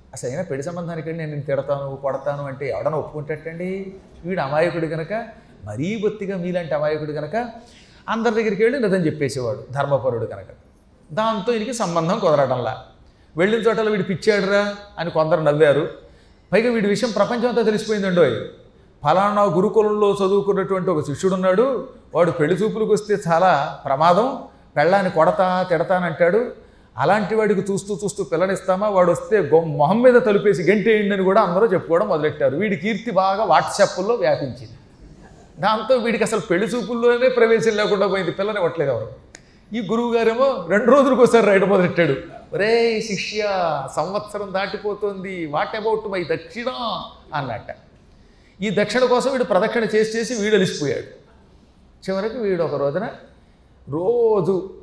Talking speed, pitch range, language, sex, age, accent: 130 wpm, 170-220 Hz, Telugu, male, 30-49, native